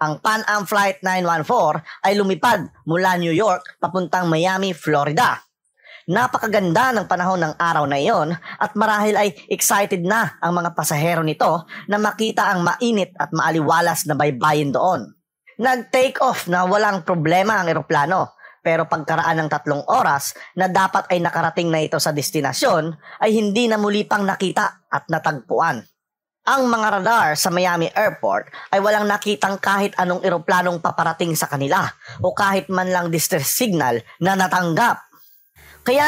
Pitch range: 170-220 Hz